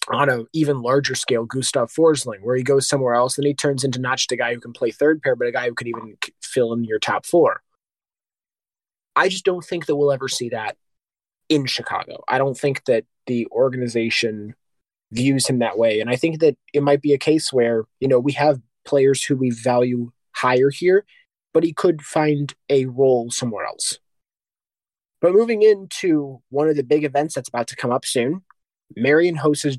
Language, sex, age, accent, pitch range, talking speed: English, male, 20-39, American, 125-160 Hz, 205 wpm